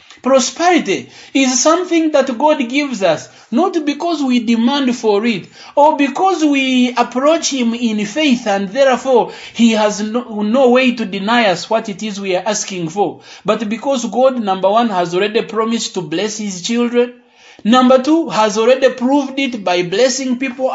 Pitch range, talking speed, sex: 210-265 Hz, 170 wpm, male